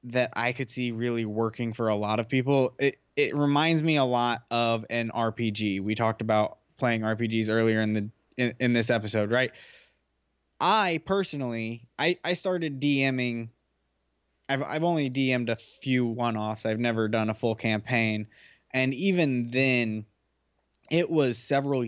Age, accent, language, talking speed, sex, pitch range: 20-39, American, English, 160 wpm, male, 110-135 Hz